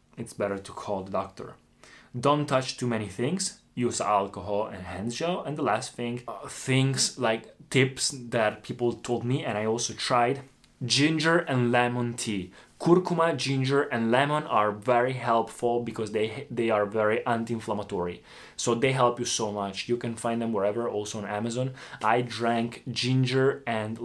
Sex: male